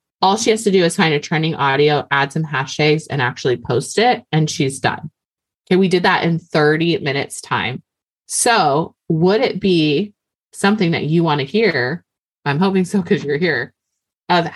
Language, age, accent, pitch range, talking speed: English, 20-39, American, 145-185 Hz, 185 wpm